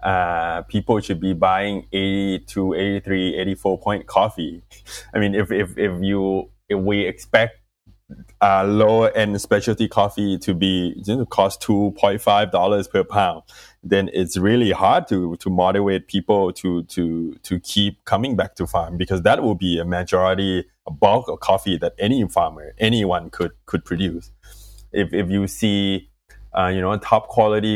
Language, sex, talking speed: English, male, 165 wpm